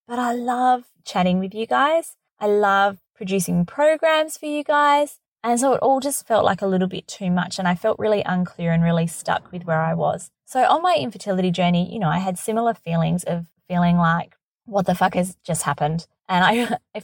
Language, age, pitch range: English, 20-39, 175-240 Hz